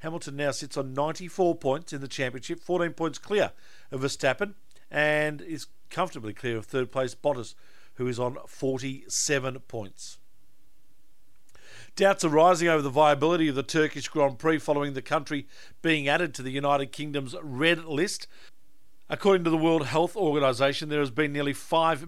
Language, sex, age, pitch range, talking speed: English, male, 50-69, 130-165 Hz, 165 wpm